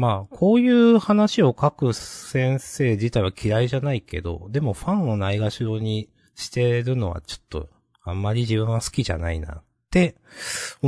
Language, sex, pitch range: Japanese, male, 90-130 Hz